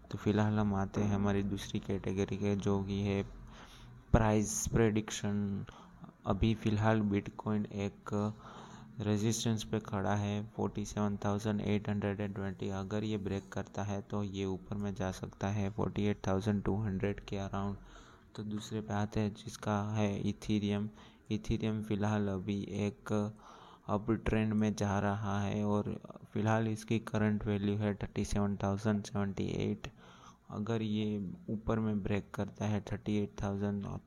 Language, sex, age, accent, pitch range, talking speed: Hindi, male, 20-39, native, 100-105 Hz, 145 wpm